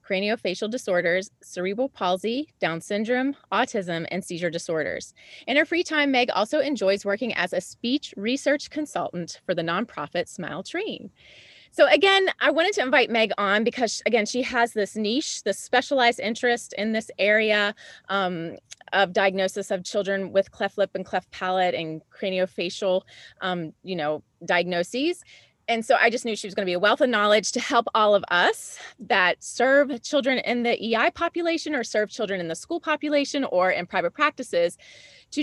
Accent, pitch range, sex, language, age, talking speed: American, 190-255 Hz, female, English, 30-49, 170 wpm